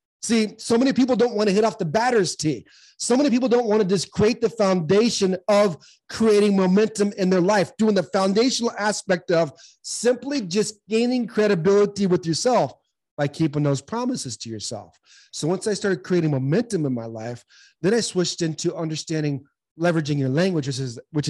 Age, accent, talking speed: 30-49, American, 180 wpm